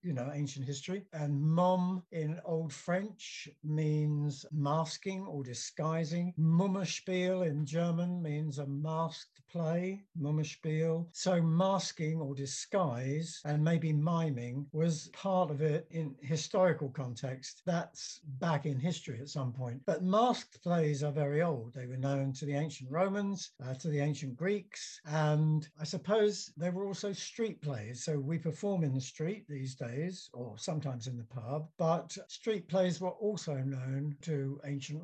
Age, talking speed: 60-79, 150 wpm